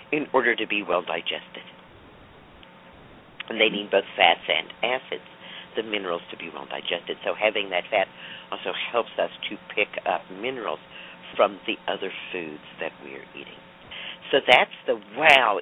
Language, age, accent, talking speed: English, 50-69, American, 150 wpm